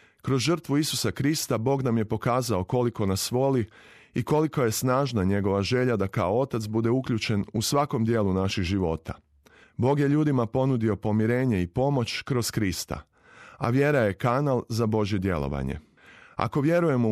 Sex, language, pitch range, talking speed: male, Croatian, 105-135 Hz, 160 wpm